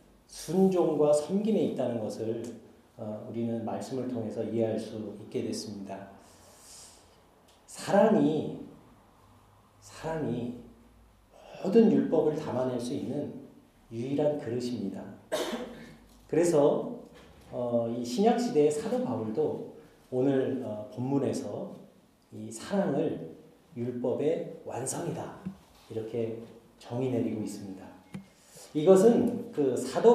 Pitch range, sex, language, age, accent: 115-180 Hz, male, Korean, 40-59, native